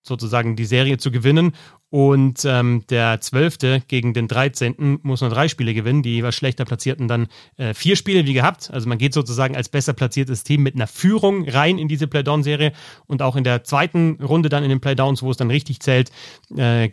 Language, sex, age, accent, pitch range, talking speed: German, male, 30-49, German, 120-155 Hz, 205 wpm